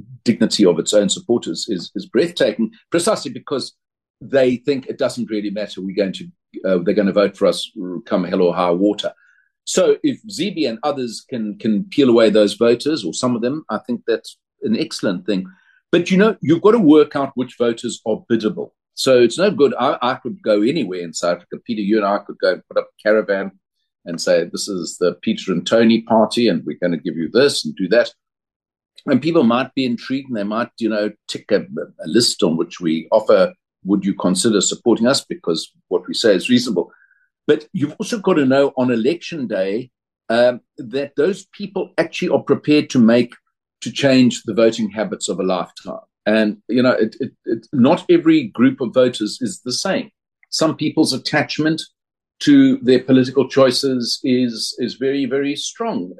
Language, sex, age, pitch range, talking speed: English, male, 50-69, 110-155 Hz, 200 wpm